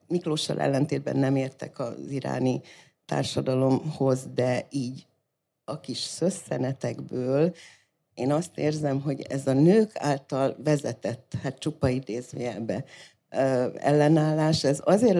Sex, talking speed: female, 105 wpm